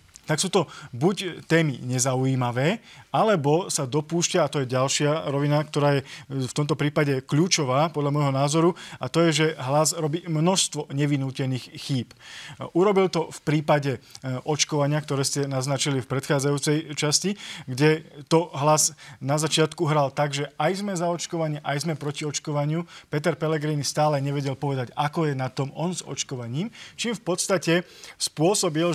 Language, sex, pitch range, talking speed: Slovak, male, 140-160 Hz, 155 wpm